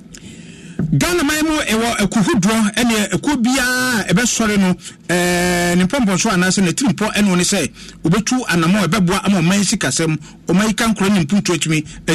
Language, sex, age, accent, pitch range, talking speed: English, male, 50-69, Nigerian, 175-220 Hz, 150 wpm